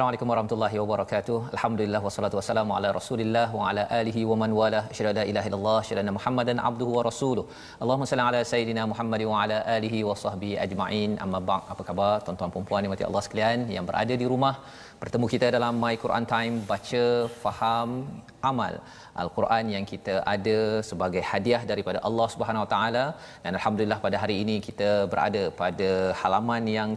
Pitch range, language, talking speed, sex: 105-120 Hz, Malay, 180 wpm, male